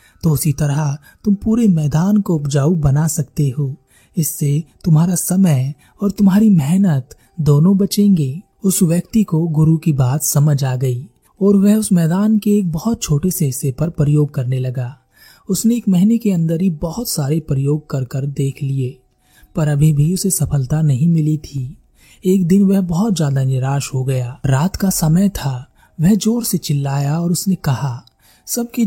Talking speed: 175 wpm